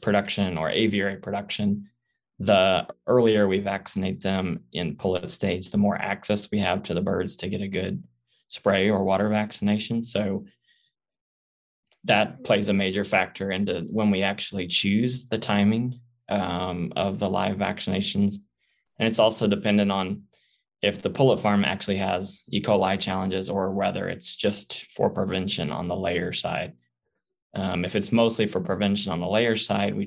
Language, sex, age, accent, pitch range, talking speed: English, male, 20-39, American, 95-105 Hz, 160 wpm